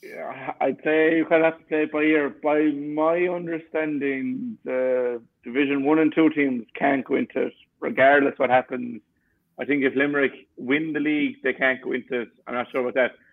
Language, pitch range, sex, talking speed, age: English, 120-140 Hz, male, 205 wpm, 50-69